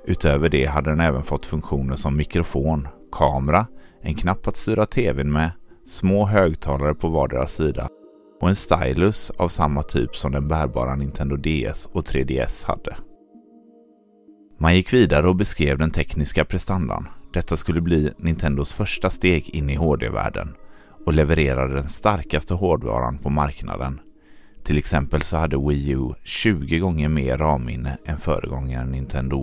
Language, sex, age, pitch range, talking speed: Swedish, male, 30-49, 70-90 Hz, 145 wpm